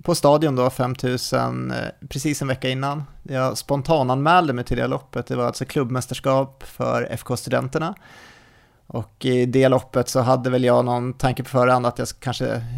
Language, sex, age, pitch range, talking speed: Swedish, male, 30-49, 125-140 Hz, 175 wpm